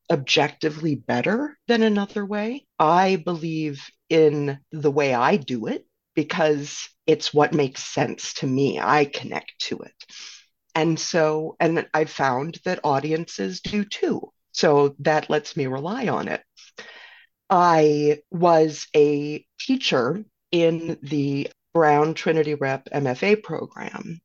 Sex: female